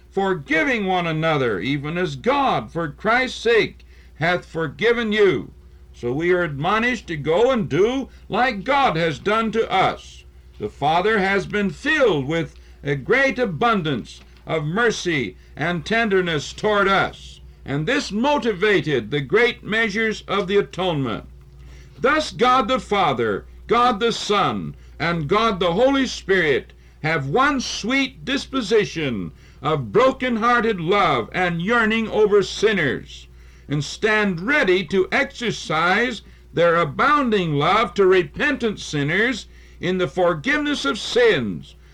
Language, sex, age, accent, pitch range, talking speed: English, male, 60-79, American, 160-245 Hz, 125 wpm